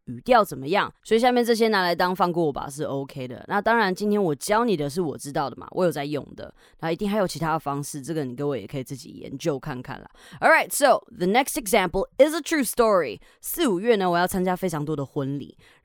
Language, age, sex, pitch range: Chinese, 20-39, female, 140-190 Hz